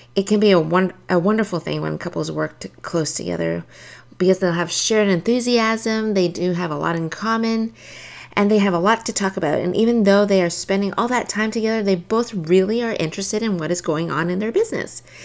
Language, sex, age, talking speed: English, female, 30-49, 225 wpm